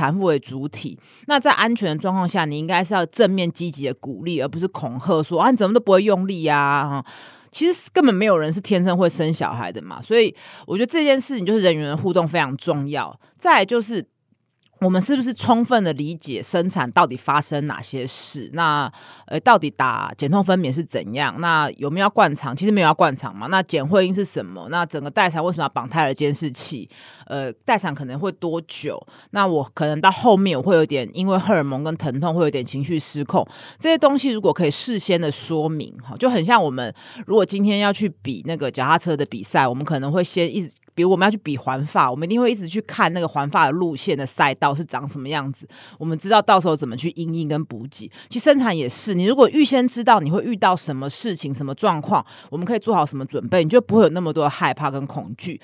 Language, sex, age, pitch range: Chinese, female, 30-49, 145-205 Hz